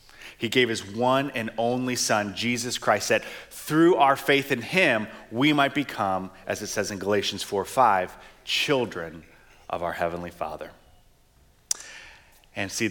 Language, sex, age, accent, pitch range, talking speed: English, male, 30-49, American, 105-140 Hz, 150 wpm